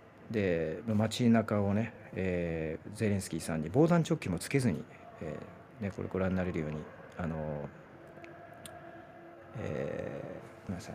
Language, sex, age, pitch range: Japanese, male, 40-59, 90-115 Hz